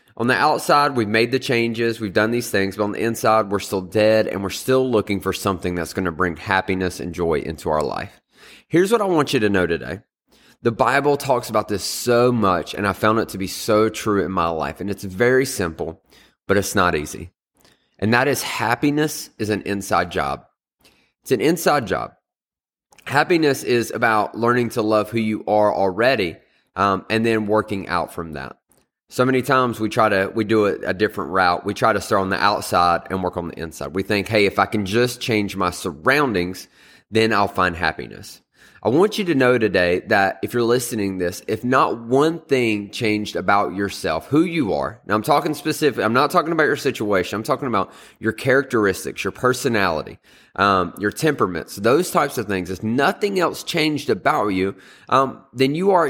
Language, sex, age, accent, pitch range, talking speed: English, male, 20-39, American, 95-125 Hz, 205 wpm